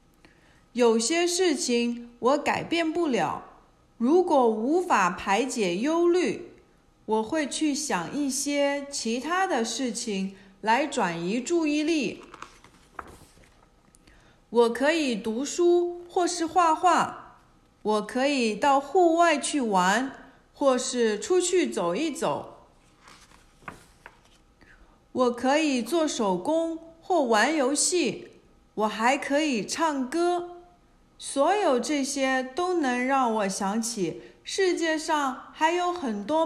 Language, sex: Chinese, female